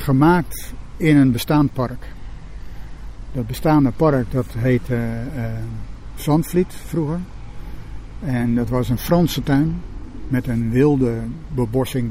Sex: male